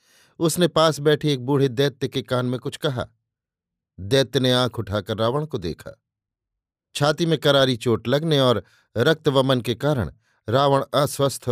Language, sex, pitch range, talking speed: Hindi, male, 115-135 Hz, 150 wpm